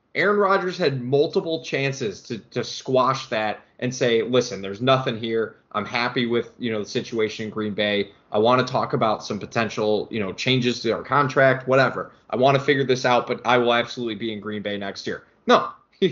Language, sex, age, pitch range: English, male, 20-39, 120-160 Hz